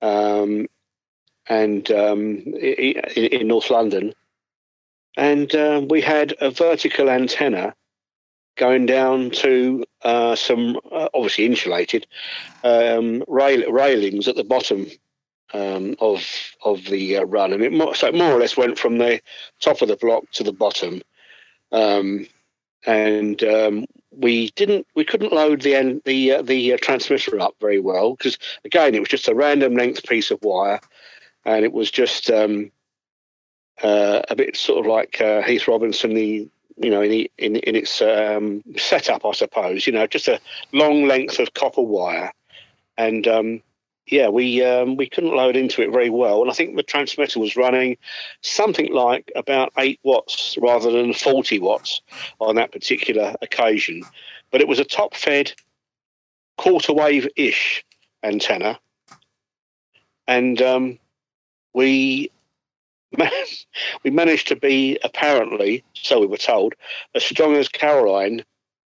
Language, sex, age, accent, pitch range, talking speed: English, male, 50-69, British, 105-140 Hz, 150 wpm